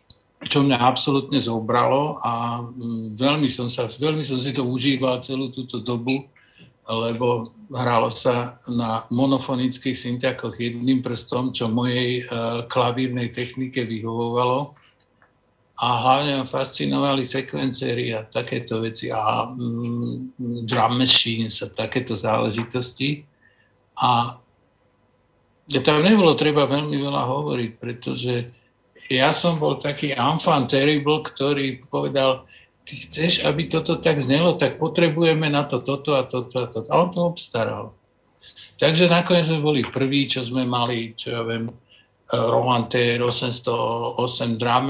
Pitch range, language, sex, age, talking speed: 120-140 Hz, Czech, male, 60-79, 125 wpm